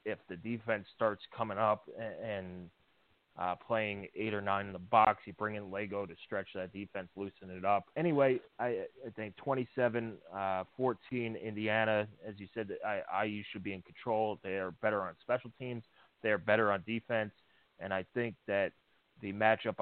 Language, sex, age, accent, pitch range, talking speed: English, male, 30-49, American, 100-125 Hz, 175 wpm